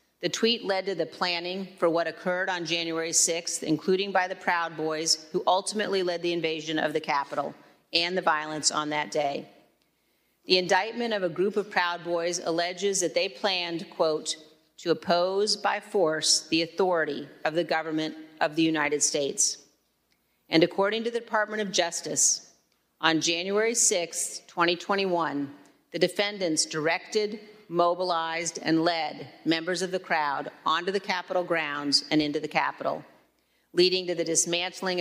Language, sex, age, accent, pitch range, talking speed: English, female, 40-59, American, 160-190 Hz, 155 wpm